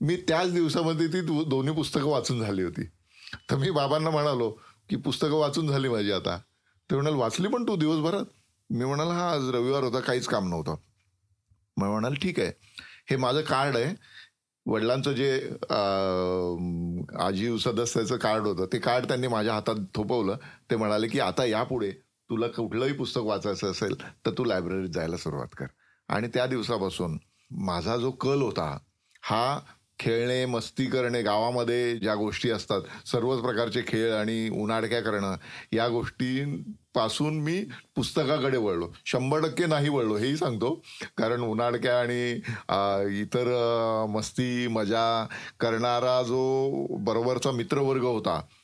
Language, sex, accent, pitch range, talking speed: Marathi, male, native, 110-140 Hz, 135 wpm